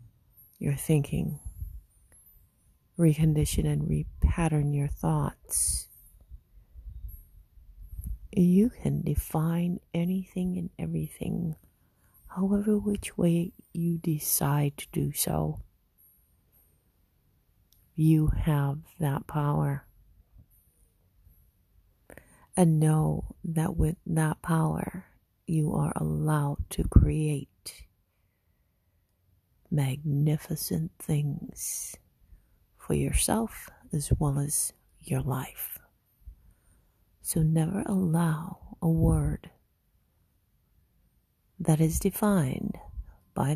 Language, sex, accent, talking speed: English, female, American, 75 wpm